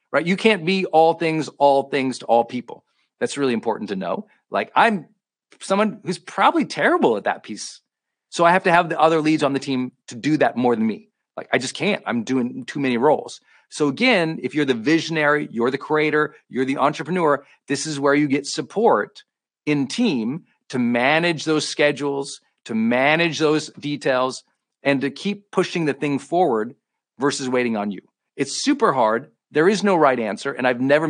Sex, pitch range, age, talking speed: male, 140-175 Hz, 40-59, 195 wpm